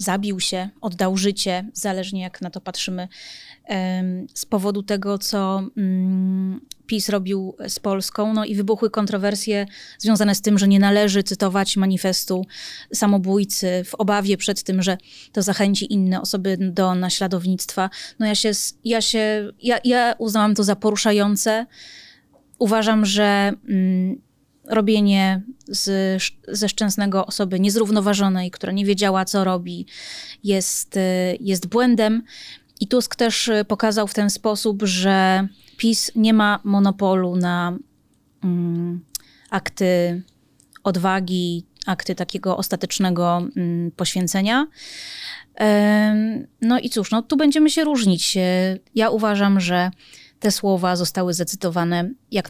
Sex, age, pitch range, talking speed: female, 20-39, 185-215 Hz, 120 wpm